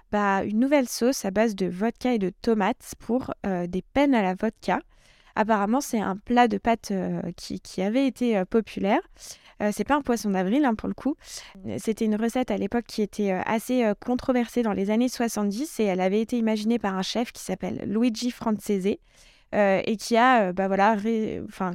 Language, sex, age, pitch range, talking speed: French, female, 20-39, 195-230 Hz, 215 wpm